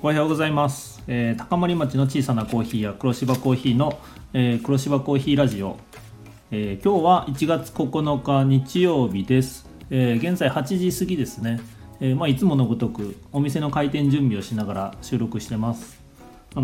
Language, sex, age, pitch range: Japanese, male, 40-59, 110-140 Hz